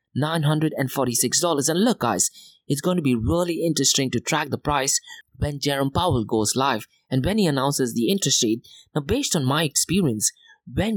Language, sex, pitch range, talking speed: English, male, 120-165 Hz, 175 wpm